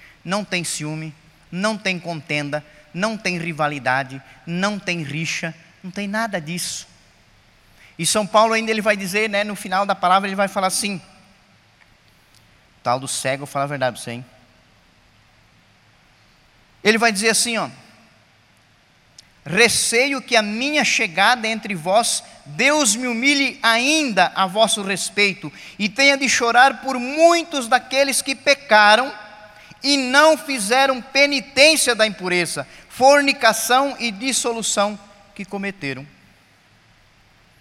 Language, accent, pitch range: Portuguese, Brazilian, 130-220 Hz